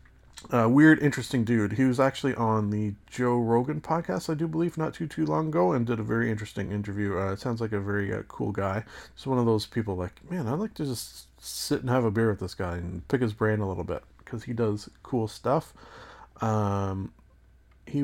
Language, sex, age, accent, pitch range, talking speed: English, male, 40-59, American, 105-135 Hz, 225 wpm